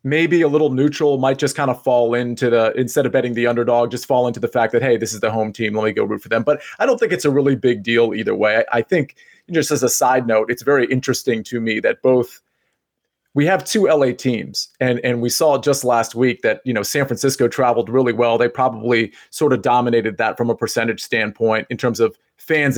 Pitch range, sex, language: 120-155 Hz, male, English